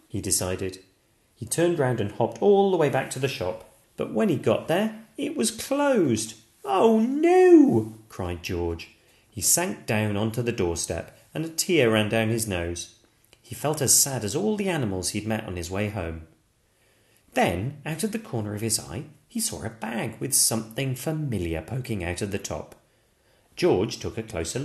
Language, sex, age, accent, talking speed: English, male, 30-49, British, 190 wpm